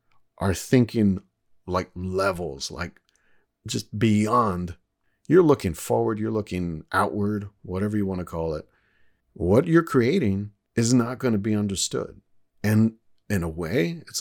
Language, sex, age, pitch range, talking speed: English, male, 50-69, 90-115 Hz, 140 wpm